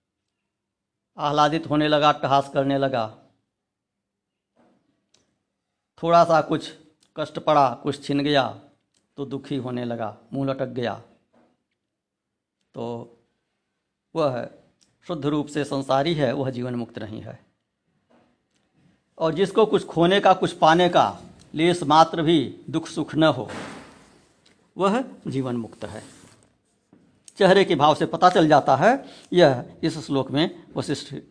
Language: Hindi